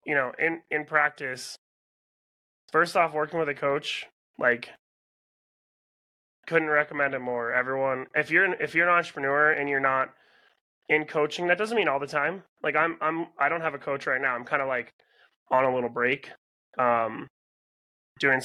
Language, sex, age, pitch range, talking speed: English, male, 20-39, 125-155 Hz, 180 wpm